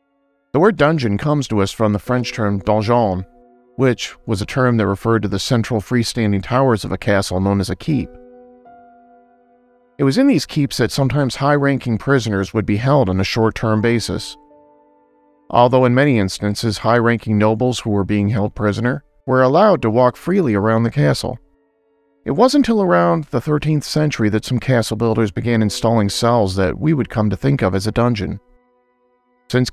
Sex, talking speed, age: male, 180 wpm, 40-59